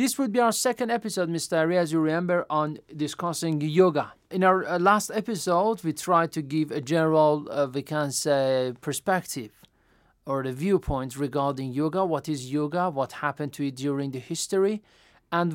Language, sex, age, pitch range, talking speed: Persian, male, 40-59, 145-200 Hz, 175 wpm